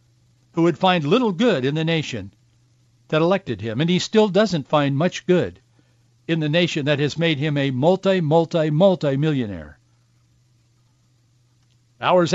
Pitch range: 120-195 Hz